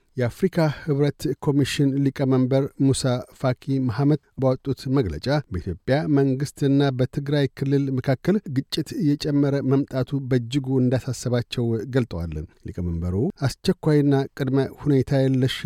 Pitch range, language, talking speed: 125-145 Hz, Amharic, 100 wpm